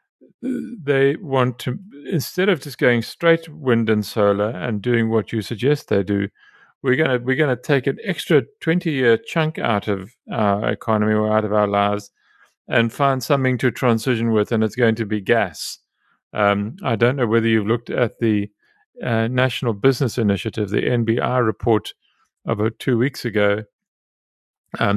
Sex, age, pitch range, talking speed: male, 40-59, 105-135 Hz, 165 wpm